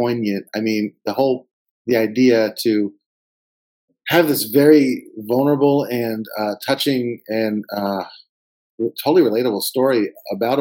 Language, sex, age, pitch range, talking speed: English, male, 30-49, 115-150 Hz, 115 wpm